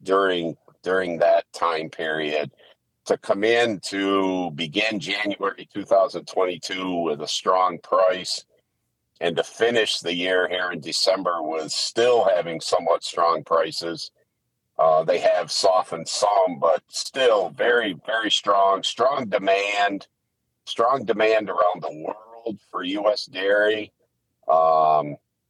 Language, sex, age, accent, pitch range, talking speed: English, male, 50-69, American, 80-105 Hz, 120 wpm